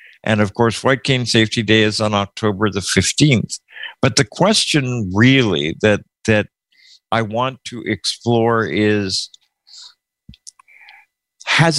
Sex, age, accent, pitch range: male, 50-69, American, 100-125 Hz